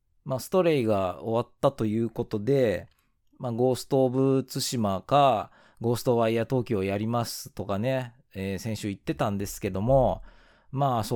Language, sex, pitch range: Japanese, male, 105-140 Hz